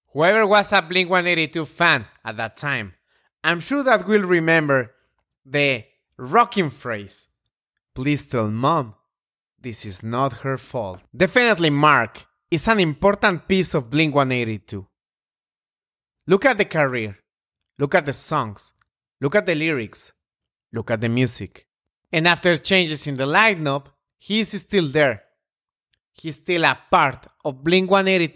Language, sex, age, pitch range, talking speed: English, male, 30-49, 125-185 Hz, 145 wpm